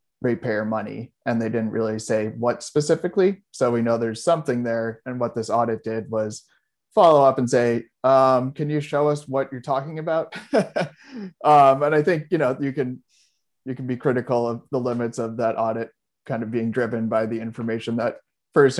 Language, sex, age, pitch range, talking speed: English, male, 30-49, 115-130 Hz, 195 wpm